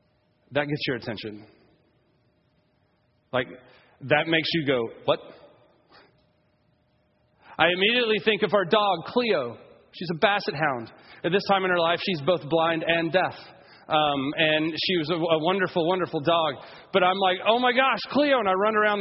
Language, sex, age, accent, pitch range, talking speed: English, male, 30-49, American, 155-220 Hz, 165 wpm